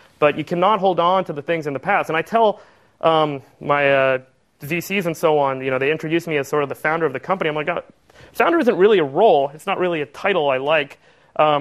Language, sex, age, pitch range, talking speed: English, male, 30-49, 140-175 Hz, 245 wpm